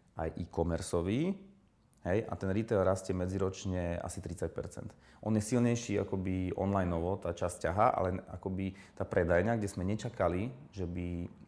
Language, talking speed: Slovak, 140 wpm